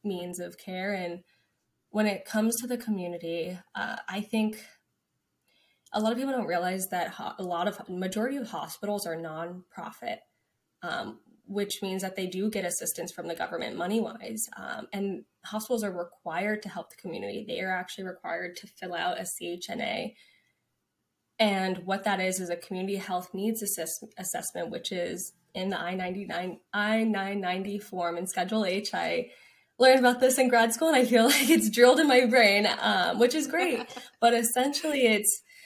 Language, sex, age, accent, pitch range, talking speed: English, female, 10-29, American, 185-230 Hz, 190 wpm